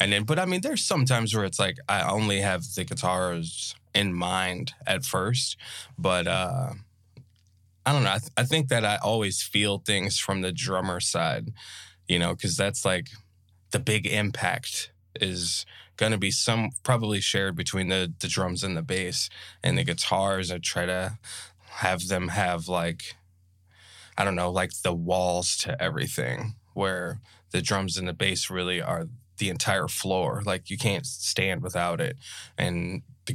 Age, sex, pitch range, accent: 10-29, male, 90-110 Hz, American